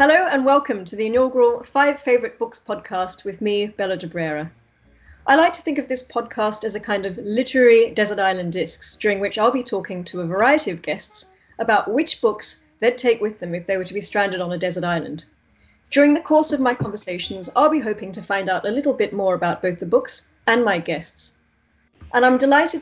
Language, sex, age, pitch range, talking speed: English, female, 30-49, 180-245 Hz, 220 wpm